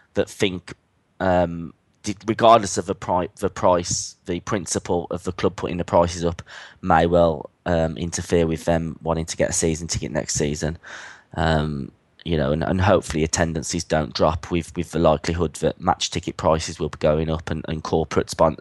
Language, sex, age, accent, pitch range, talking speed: English, male, 20-39, British, 85-100 Hz, 185 wpm